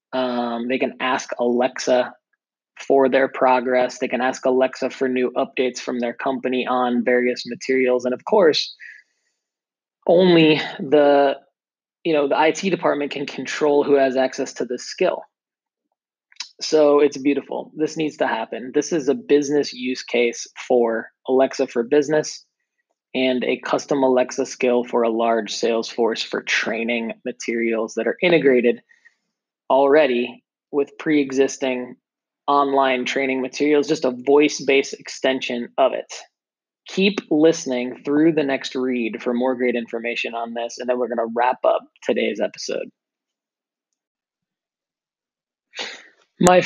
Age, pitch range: 20-39, 125-150 Hz